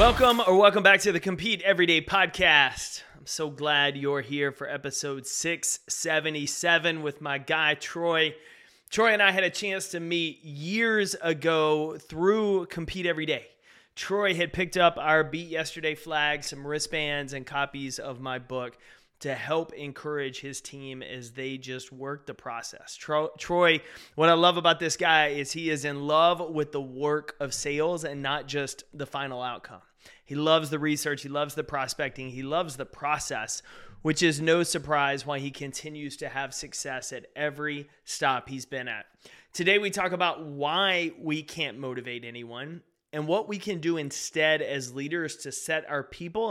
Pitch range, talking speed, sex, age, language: 140-170 Hz, 170 wpm, male, 20-39, English